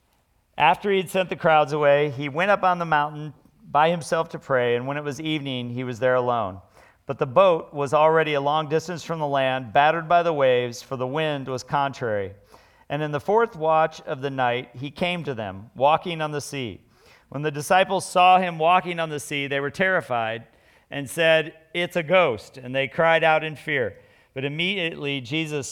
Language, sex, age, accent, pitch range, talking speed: English, male, 40-59, American, 130-165 Hz, 205 wpm